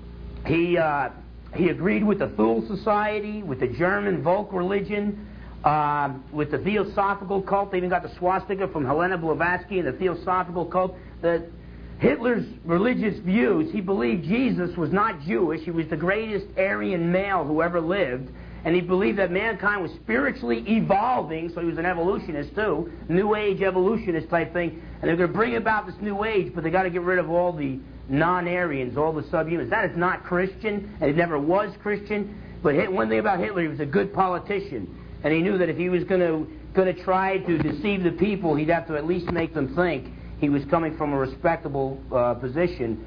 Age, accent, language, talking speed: 50-69, American, English, 195 wpm